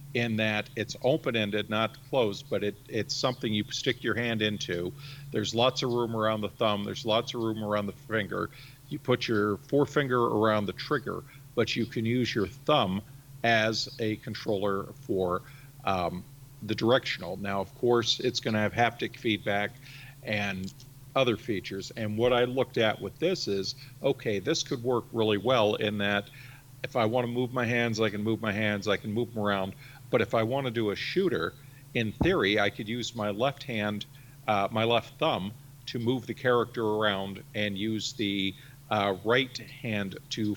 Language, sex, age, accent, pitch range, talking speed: English, male, 50-69, American, 105-135 Hz, 185 wpm